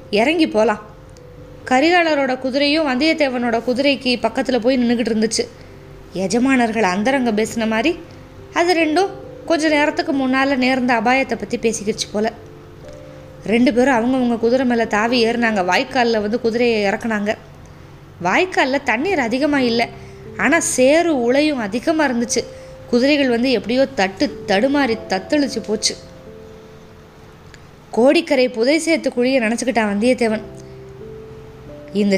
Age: 20-39